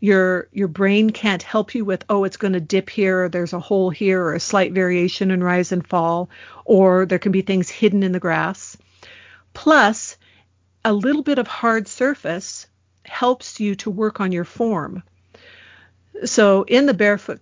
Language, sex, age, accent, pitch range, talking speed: English, female, 50-69, American, 180-220 Hz, 180 wpm